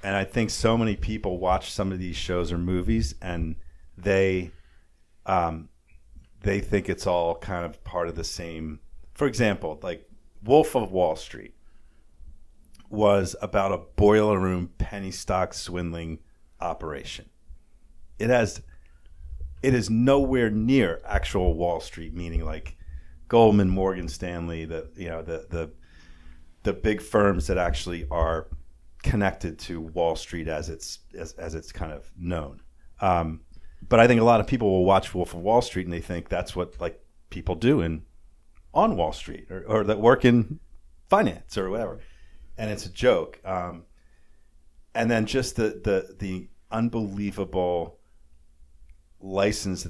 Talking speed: 150 wpm